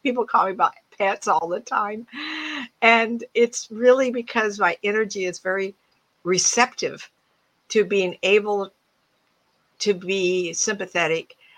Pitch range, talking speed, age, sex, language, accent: 185-245 Hz, 120 wpm, 60-79, female, English, American